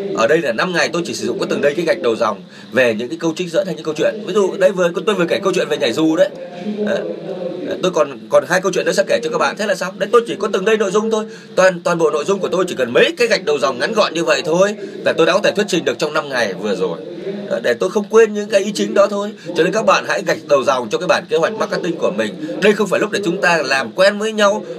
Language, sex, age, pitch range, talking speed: Vietnamese, male, 20-39, 170-215 Hz, 320 wpm